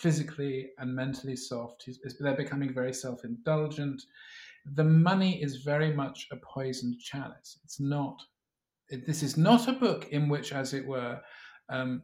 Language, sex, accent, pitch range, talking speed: English, male, British, 130-165 Hz, 145 wpm